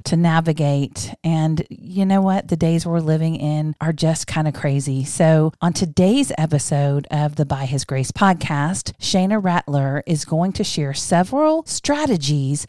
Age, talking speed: 40-59, 160 wpm